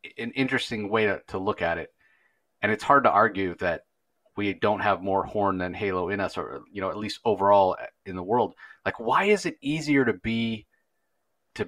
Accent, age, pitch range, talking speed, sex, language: American, 30-49, 90-110 Hz, 205 wpm, male, English